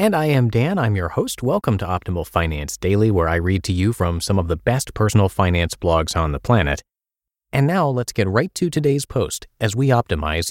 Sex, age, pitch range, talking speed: male, 30-49, 85-125 Hz, 225 wpm